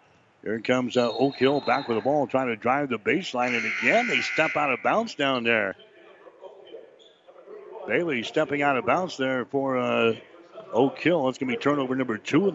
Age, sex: 60-79, male